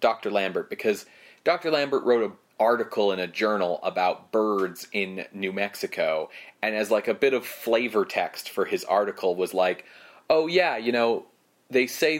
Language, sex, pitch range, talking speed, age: English, male, 95-130 Hz, 170 wpm, 30-49